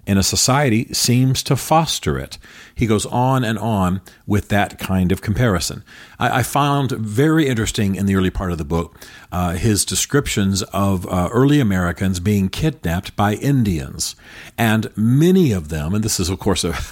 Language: English